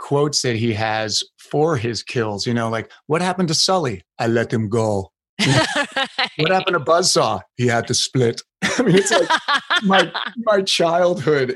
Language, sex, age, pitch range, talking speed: English, male, 30-49, 115-145 Hz, 170 wpm